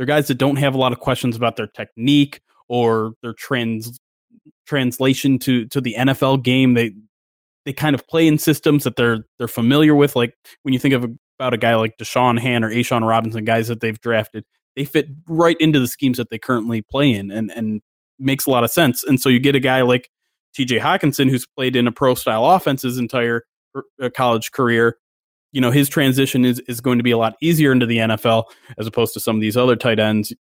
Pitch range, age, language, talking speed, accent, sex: 120-145 Hz, 20-39, English, 220 wpm, American, male